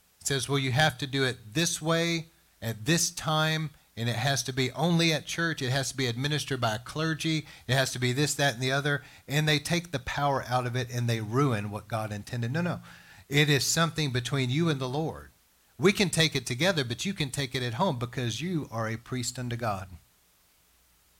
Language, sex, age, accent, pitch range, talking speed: English, male, 40-59, American, 120-155 Hz, 225 wpm